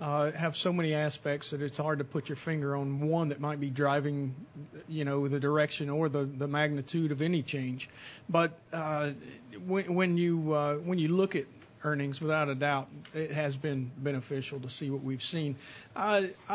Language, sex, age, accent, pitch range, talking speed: English, male, 40-59, American, 140-155 Hz, 190 wpm